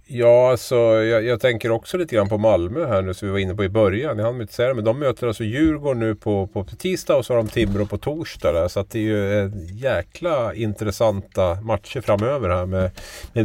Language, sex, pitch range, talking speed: Swedish, male, 95-115 Hz, 225 wpm